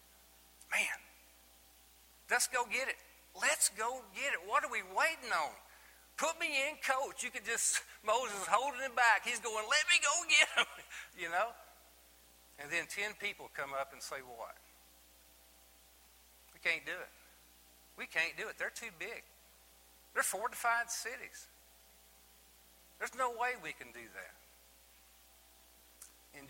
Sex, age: male, 50-69